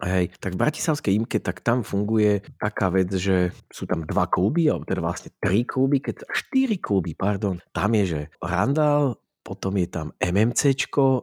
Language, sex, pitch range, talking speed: Slovak, male, 90-115 Hz, 170 wpm